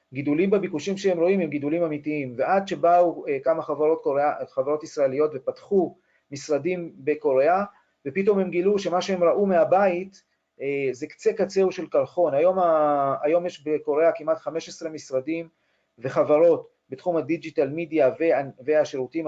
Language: Hebrew